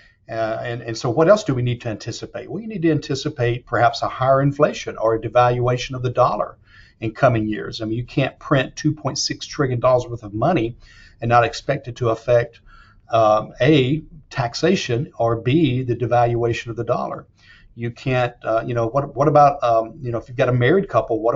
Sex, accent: male, American